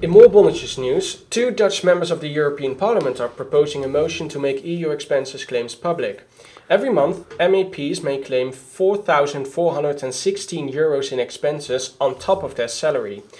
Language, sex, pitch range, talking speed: English, male, 135-195 Hz, 150 wpm